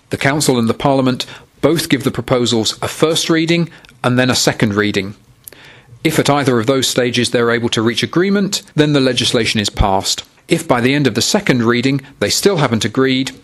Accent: British